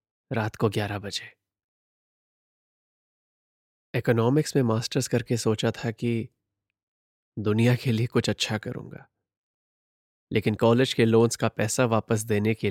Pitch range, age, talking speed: 100-120 Hz, 30-49, 125 wpm